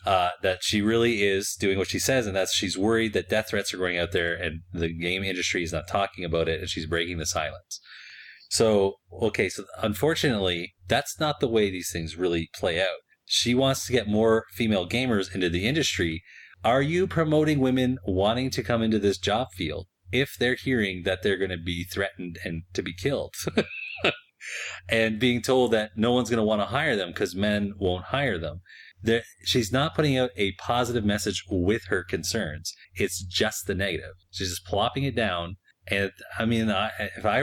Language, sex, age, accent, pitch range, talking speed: English, male, 30-49, American, 90-120 Hz, 195 wpm